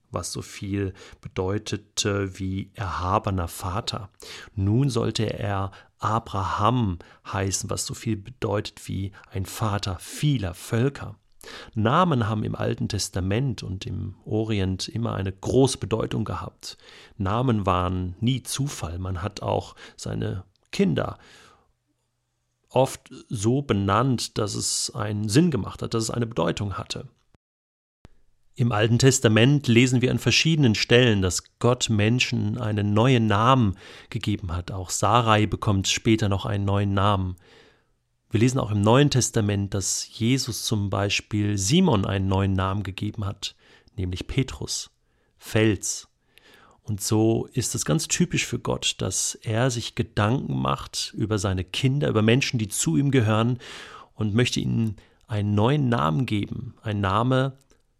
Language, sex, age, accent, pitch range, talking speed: German, male, 40-59, German, 100-120 Hz, 135 wpm